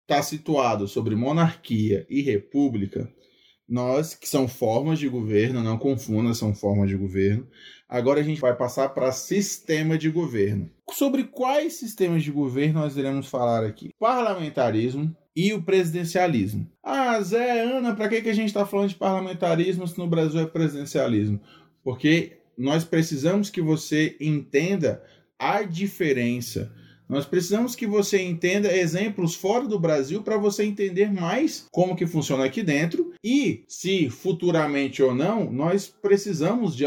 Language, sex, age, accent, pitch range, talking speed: Portuguese, male, 20-39, Brazilian, 130-195 Hz, 150 wpm